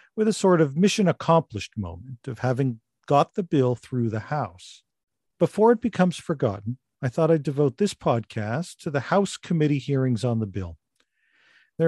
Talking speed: 165 wpm